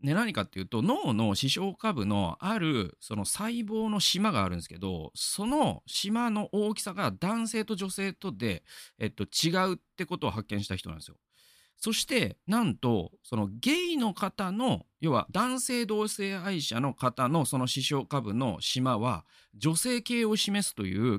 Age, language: 40-59, Japanese